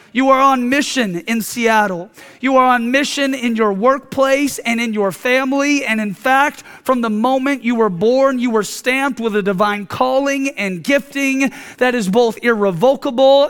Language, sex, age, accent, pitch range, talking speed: English, male, 30-49, American, 210-265 Hz, 175 wpm